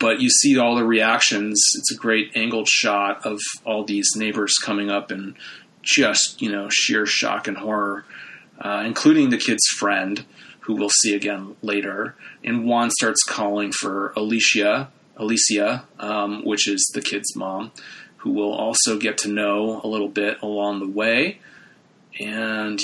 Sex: male